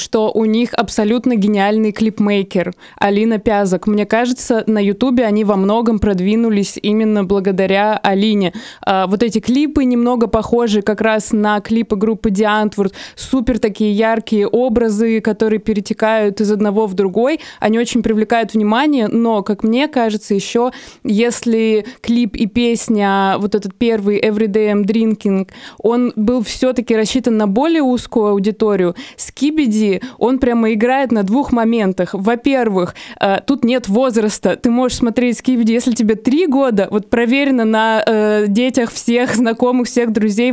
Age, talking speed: 20-39, 145 wpm